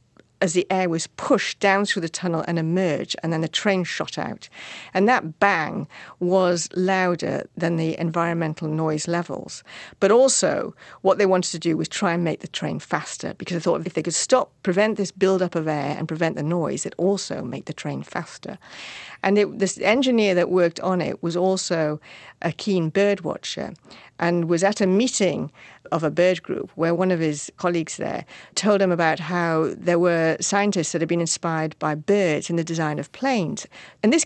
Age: 50-69